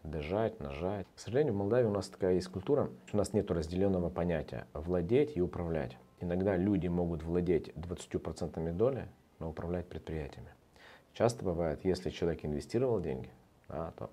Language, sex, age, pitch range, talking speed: Russian, male, 40-59, 75-90 Hz, 150 wpm